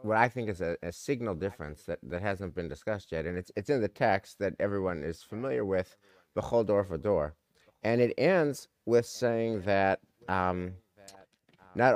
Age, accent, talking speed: 50-69, American, 175 wpm